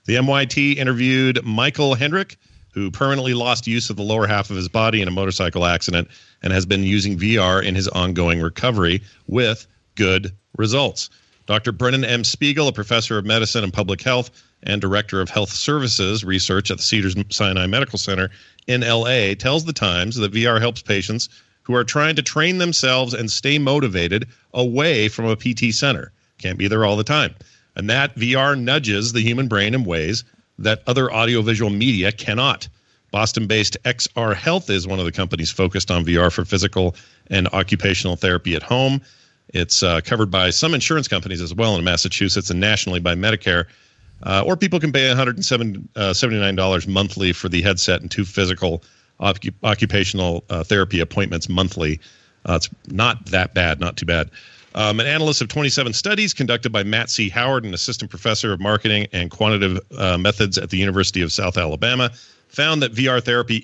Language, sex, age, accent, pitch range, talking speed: English, male, 40-59, American, 95-125 Hz, 175 wpm